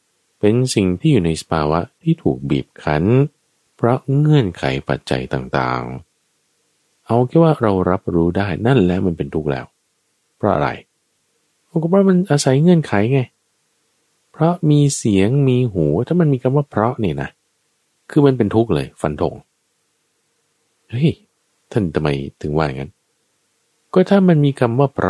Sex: male